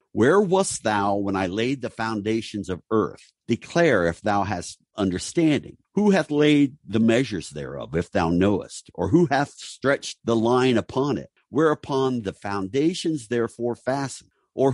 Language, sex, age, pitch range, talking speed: English, male, 50-69, 95-130 Hz, 155 wpm